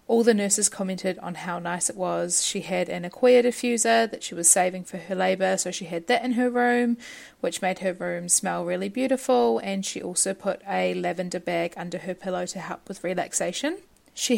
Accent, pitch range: Australian, 180-220 Hz